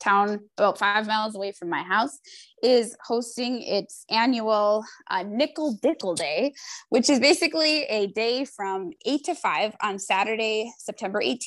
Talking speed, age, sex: 145 wpm, 20-39, female